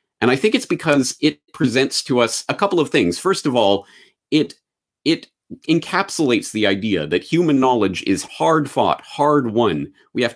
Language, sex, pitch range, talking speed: English, male, 95-130 Hz, 180 wpm